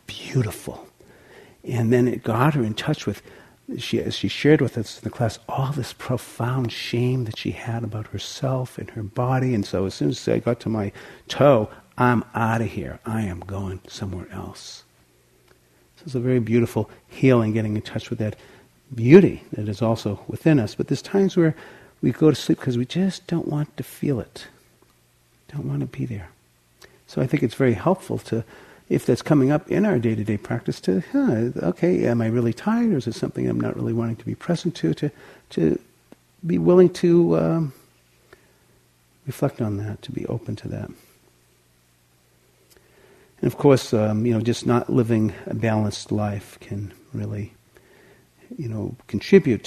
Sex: male